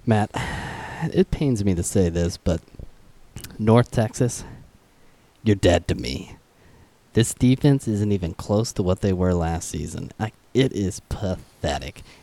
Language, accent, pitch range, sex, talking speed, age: English, American, 95-135 Hz, male, 140 wpm, 30-49